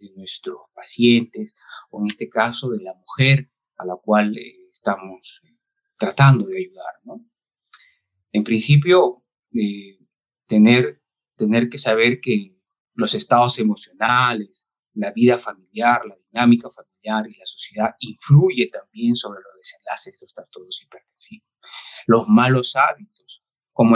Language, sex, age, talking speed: Spanish, male, 30-49, 130 wpm